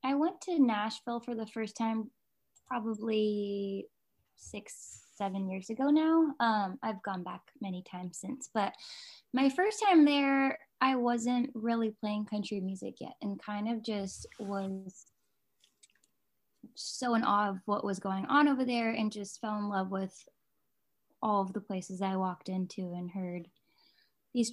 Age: 10-29